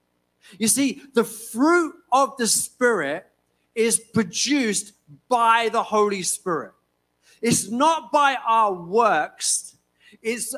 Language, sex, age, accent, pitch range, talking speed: English, male, 40-59, British, 190-255 Hz, 110 wpm